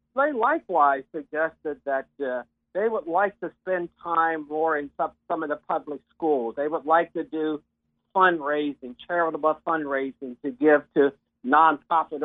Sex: male